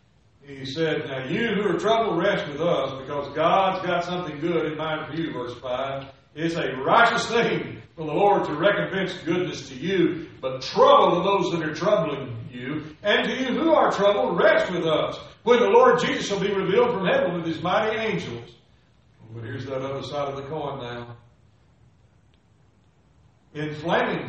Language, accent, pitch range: English, American, 135-200 Hz